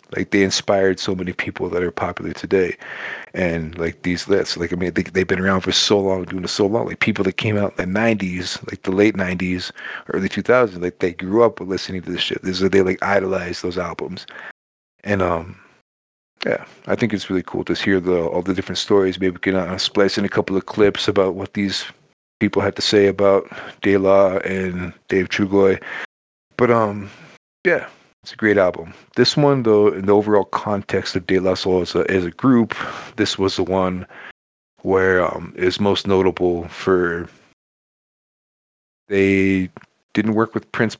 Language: English